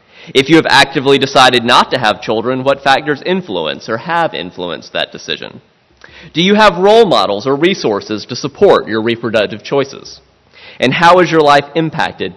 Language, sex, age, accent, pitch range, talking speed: English, male, 30-49, American, 110-165 Hz, 170 wpm